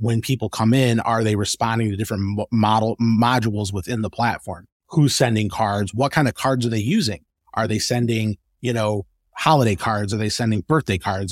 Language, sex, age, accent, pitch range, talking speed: English, male, 30-49, American, 100-120 Hz, 190 wpm